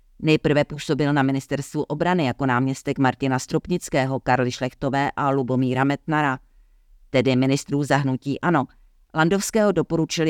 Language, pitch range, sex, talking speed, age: Czech, 130-155 Hz, female, 115 wpm, 40-59